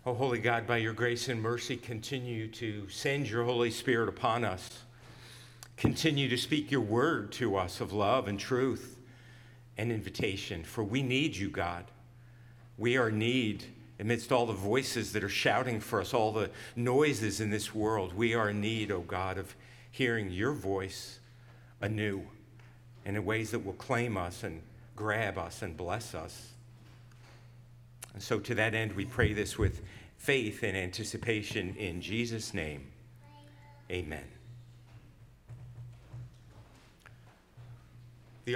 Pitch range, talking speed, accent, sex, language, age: 110-125 Hz, 150 wpm, American, male, English, 50-69